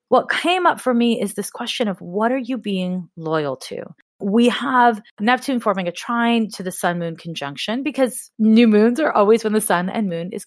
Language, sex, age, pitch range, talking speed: English, female, 30-49, 180-235 Hz, 210 wpm